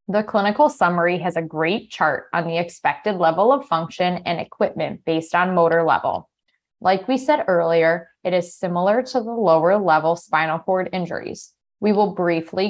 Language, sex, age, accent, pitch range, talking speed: English, female, 20-39, American, 165-205 Hz, 170 wpm